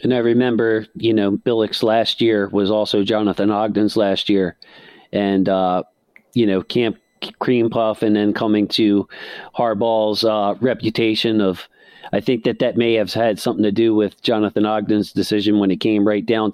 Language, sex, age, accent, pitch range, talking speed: English, male, 40-59, American, 100-115 Hz, 175 wpm